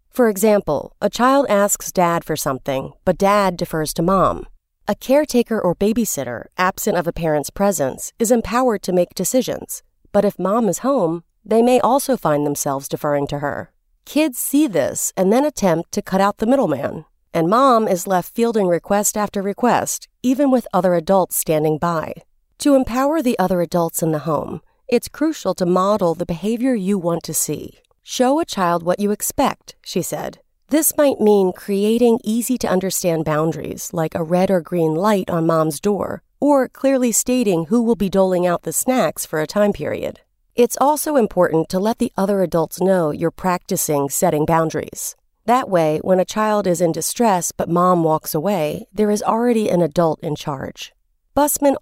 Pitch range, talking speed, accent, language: 165-235 Hz, 175 wpm, American, English